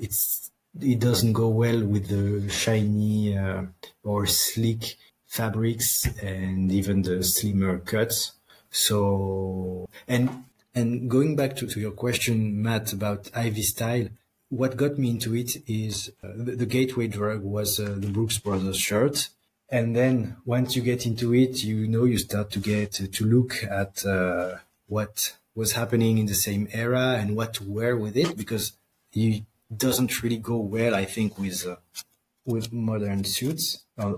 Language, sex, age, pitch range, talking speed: English, male, 30-49, 100-120 Hz, 160 wpm